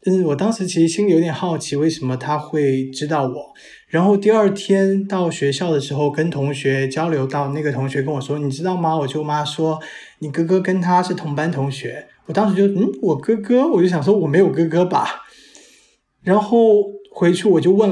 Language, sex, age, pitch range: Chinese, male, 20-39, 140-175 Hz